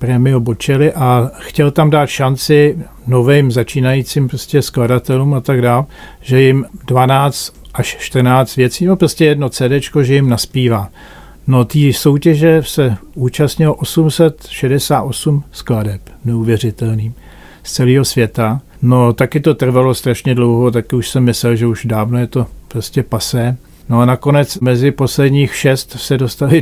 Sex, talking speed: male, 135 wpm